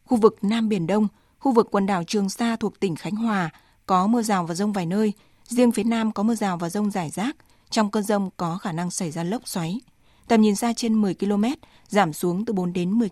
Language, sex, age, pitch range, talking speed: Vietnamese, female, 20-39, 190-230 Hz, 245 wpm